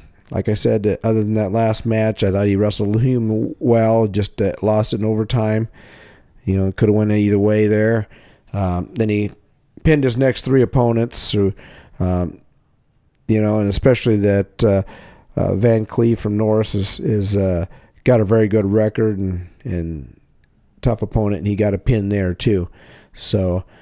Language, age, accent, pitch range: English, 40-59, American, 95-120 Hz